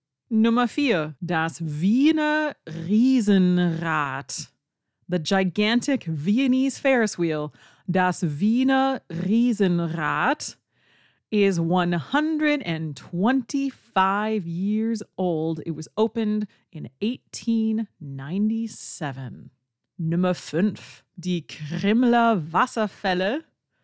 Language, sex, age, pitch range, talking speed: English, female, 30-49, 170-225 Hz, 70 wpm